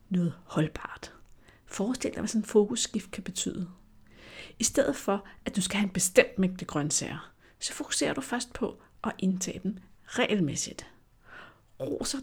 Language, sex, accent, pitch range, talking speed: Danish, female, native, 180-240 Hz, 150 wpm